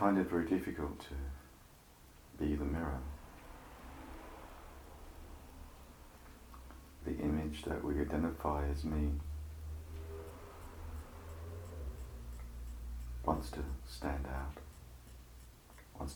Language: English